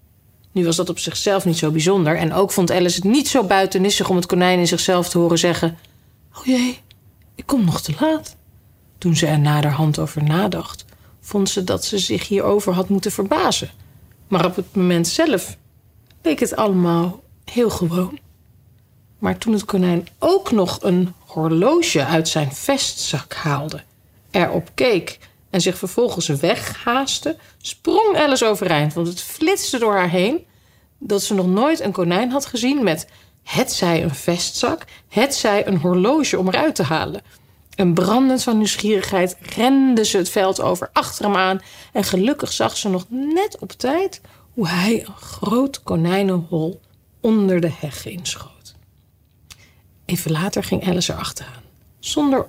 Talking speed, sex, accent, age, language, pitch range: 155 wpm, female, Dutch, 40-59, Dutch, 170-230 Hz